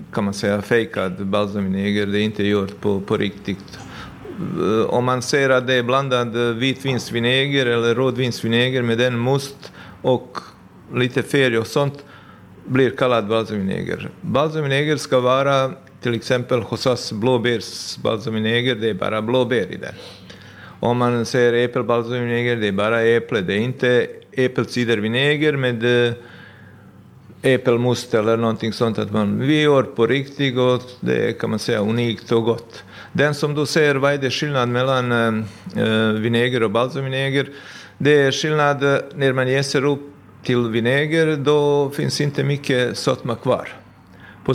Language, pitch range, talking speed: Swedish, 115-135 Hz, 145 wpm